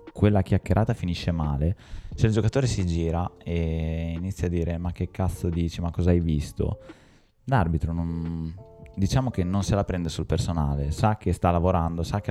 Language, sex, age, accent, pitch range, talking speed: Italian, male, 20-39, native, 80-95 Hz, 175 wpm